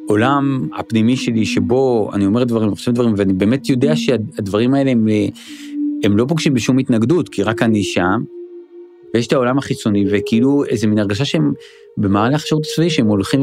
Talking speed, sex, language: 170 wpm, male, Hebrew